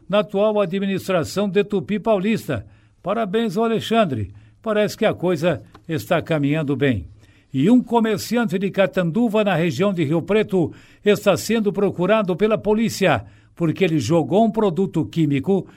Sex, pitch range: male, 150-205 Hz